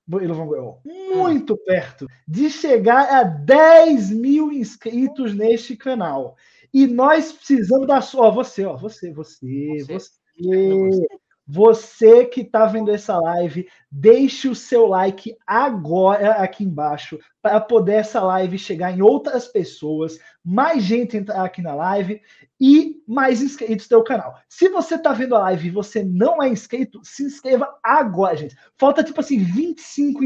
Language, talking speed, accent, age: Portuguese, 140 wpm, Brazilian, 20-39